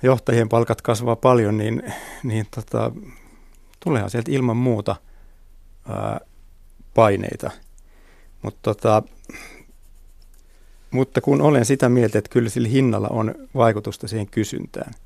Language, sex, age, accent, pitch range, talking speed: Finnish, male, 60-79, native, 100-120 Hz, 95 wpm